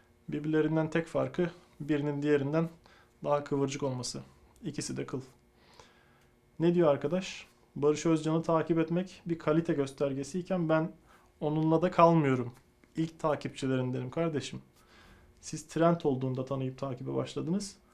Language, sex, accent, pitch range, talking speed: Turkish, male, native, 140-170 Hz, 115 wpm